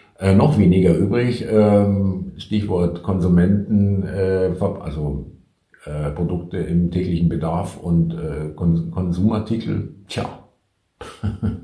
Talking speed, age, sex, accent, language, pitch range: 100 wpm, 50-69, male, German, German, 90-125 Hz